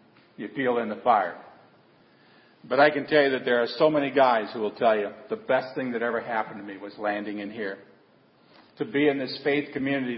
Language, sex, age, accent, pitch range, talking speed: English, male, 50-69, American, 120-145 Hz, 225 wpm